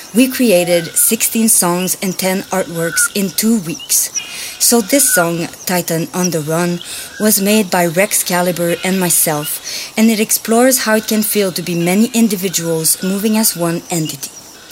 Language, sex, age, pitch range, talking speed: English, female, 40-59, 170-205 Hz, 160 wpm